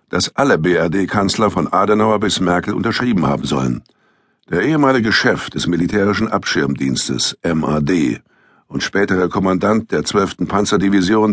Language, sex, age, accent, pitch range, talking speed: German, male, 60-79, German, 90-115 Hz, 120 wpm